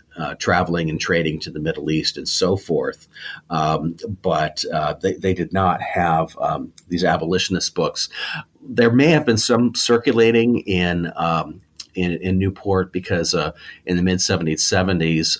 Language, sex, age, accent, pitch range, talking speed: English, male, 40-59, American, 85-105 Hz, 155 wpm